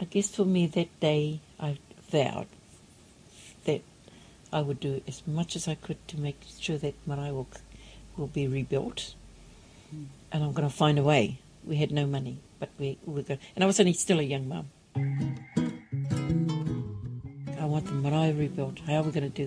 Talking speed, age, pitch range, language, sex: 190 wpm, 60-79, 145-170 Hz, English, female